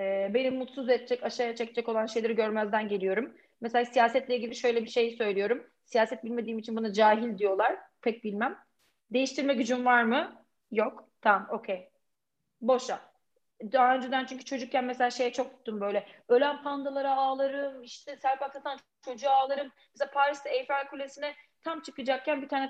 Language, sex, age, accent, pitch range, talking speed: Turkish, female, 30-49, native, 230-280 Hz, 155 wpm